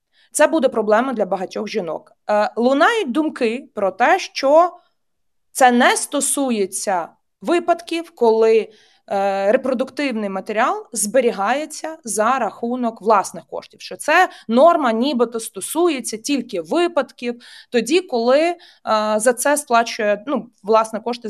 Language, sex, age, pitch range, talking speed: Ukrainian, female, 20-39, 205-270 Hz, 105 wpm